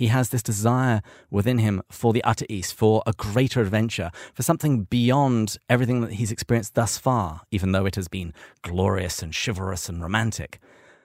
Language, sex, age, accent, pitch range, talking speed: English, male, 40-59, British, 100-125 Hz, 180 wpm